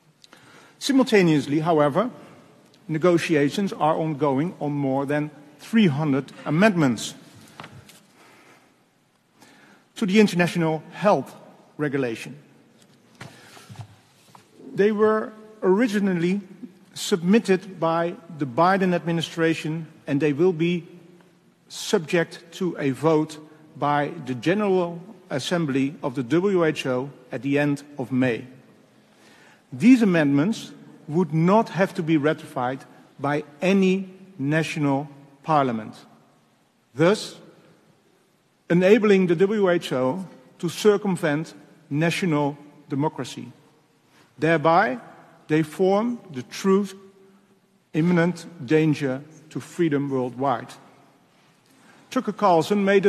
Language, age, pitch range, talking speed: English, 50-69, 145-190 Hz, 85 wpm